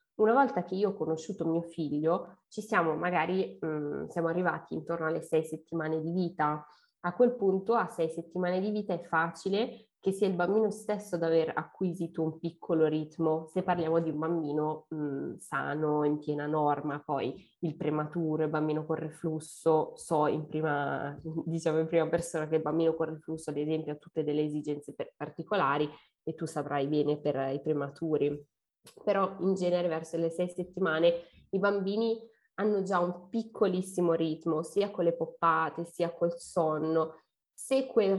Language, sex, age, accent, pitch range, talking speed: Italian, female, 20-39, native, 155-190 Hz, 170 wpm